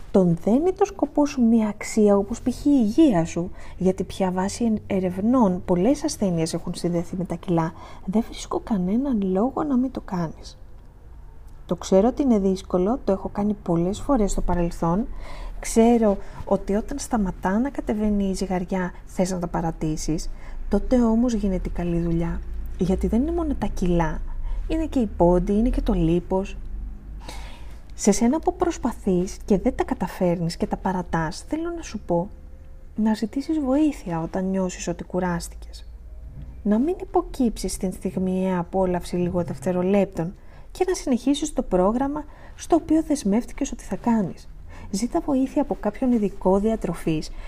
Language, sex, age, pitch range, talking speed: Greek, female, 20-39, 175-245 Hz, 155 wpm